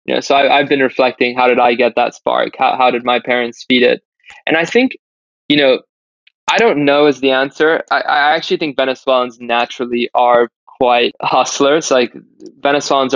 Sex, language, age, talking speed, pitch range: male, English, 20-39, 185 wpm, 120-135 Hz